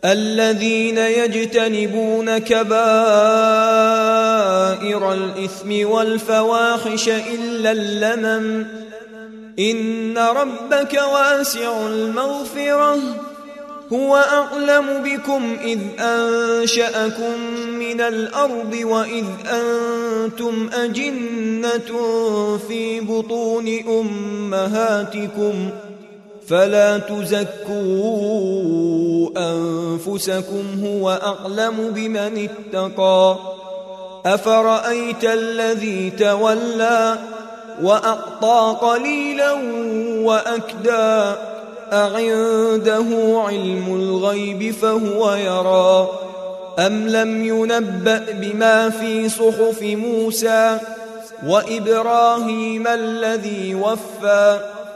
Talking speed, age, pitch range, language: 55 wpm, 20-39, 205-230 Hz, Arabic